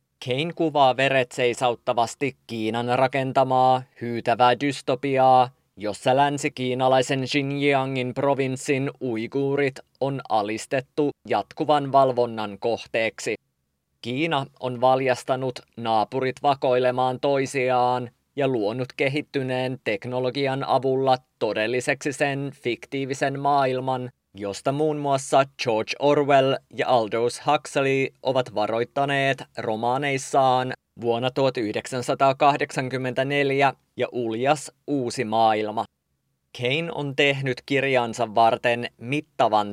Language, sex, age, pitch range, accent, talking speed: English, male, 20-39, 125-140 Hz, Finnish, 85 wpm